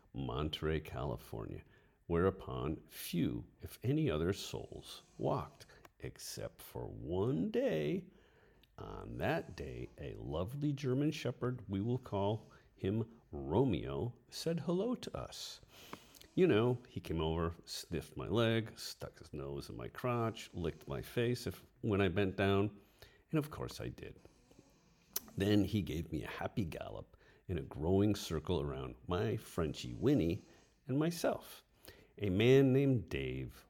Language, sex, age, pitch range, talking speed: English, male, 50-69, 80-125 Hz, 135 wpm